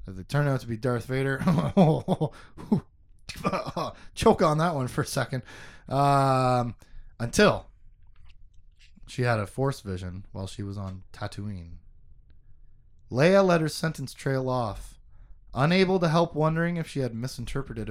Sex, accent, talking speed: male, American, 140 wpm